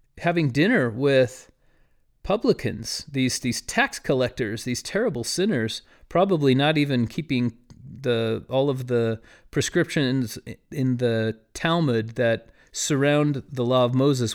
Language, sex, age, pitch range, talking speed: English, male, 40-59, 115-150 Hz, 120 wpm